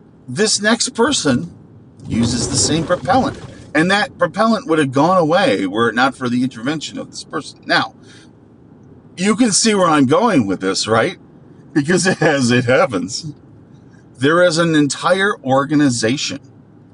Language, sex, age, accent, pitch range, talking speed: English, male, 50-69, American, 110-145 Hz, 150 wpm